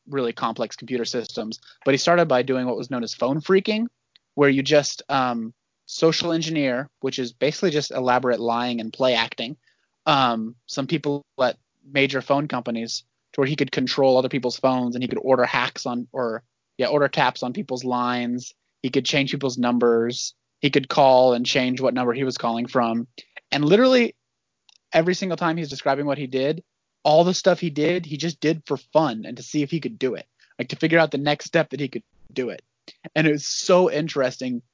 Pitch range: 125-150 Hz